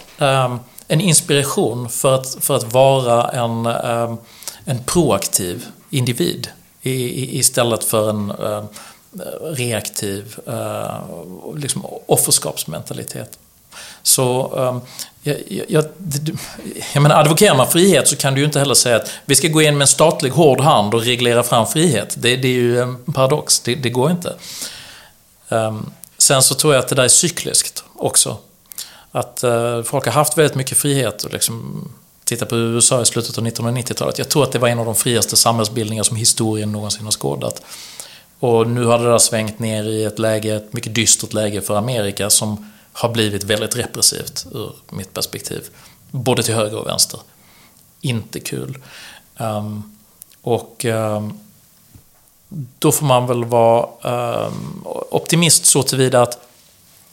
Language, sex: English, male